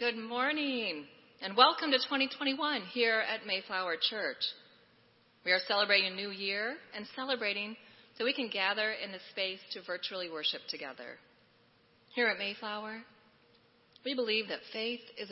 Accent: American